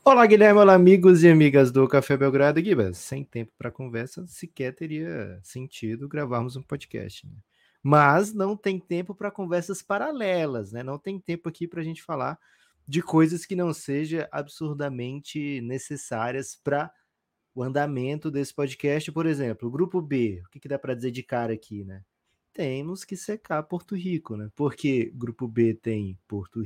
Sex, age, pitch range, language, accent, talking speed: male, 20-39, 115-160 Hz, Portuguese, Brazilian, 165 wpm